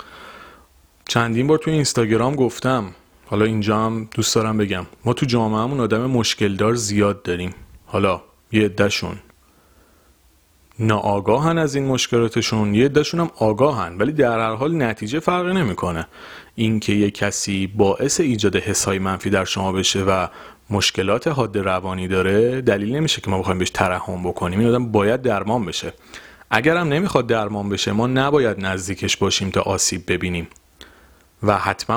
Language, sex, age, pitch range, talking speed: Persian, male, 30-49, 95-120 Hz, 140 wpm